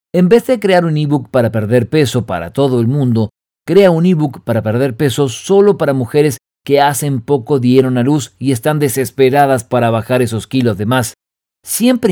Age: 50-69